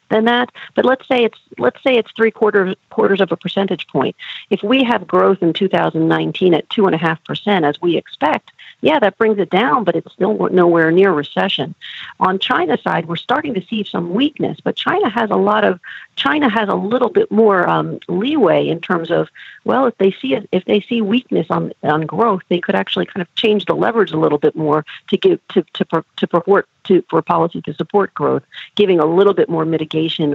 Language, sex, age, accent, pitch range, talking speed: English, female, 50-69, American, 160-215 Hz, 225 wpm